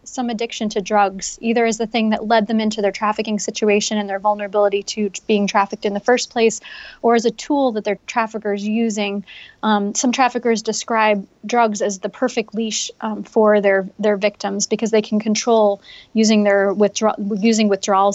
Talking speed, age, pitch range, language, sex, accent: 190 wpm, 20-39, 205-235 Hz, English, female, American